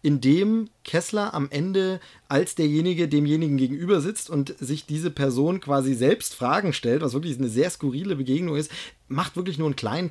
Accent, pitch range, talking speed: German, 130-175 Hz, 180 wpm